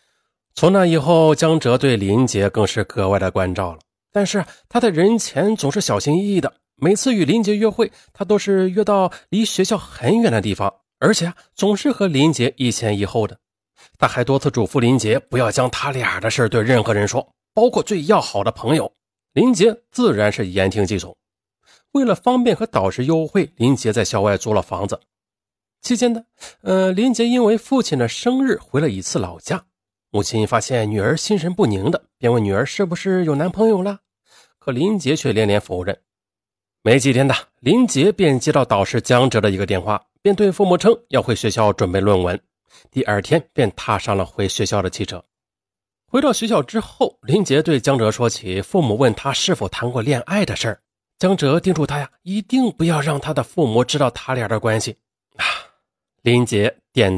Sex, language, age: male, Chinese, 30-49